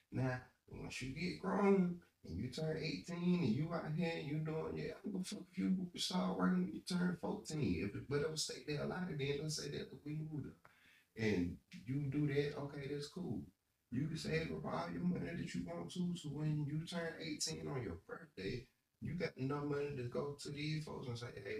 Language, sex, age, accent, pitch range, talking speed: English, male, 30-49, American, 100-150 Hz, 230 wpm